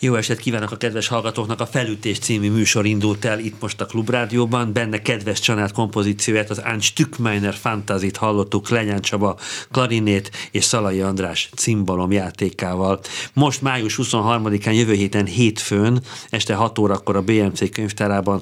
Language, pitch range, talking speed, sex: Hungarian, 100-120 Hz, 145 wpm, male